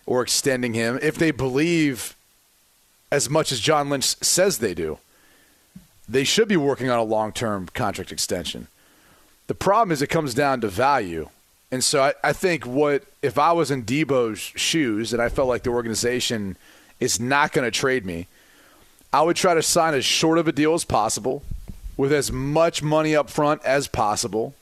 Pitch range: 120-150 Hz